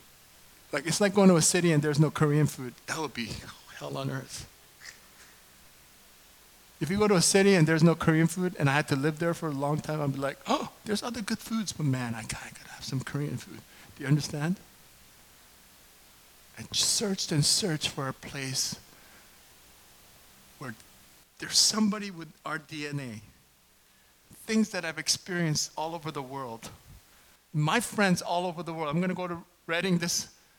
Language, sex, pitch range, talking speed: English, male, 145-195 Hz, 190 wpm